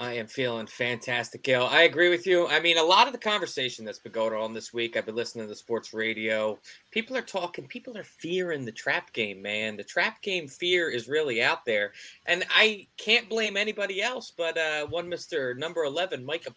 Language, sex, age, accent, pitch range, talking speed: English, male, 20-39, American, 115-175 Hz, 215 wpm